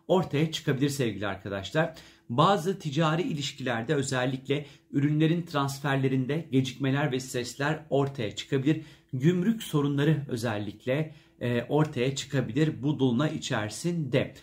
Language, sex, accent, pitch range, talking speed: Turkish, male, native, 125-155 Hz, 95 wpm